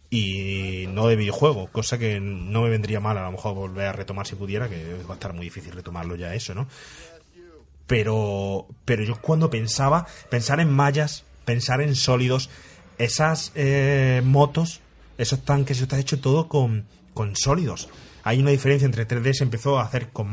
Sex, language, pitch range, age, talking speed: male, Spanish, 110-140 Hz, 30-49, 180 wpm